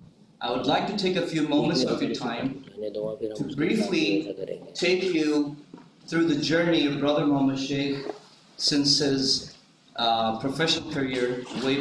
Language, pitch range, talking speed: English, 135-165 Hz, 140 wpm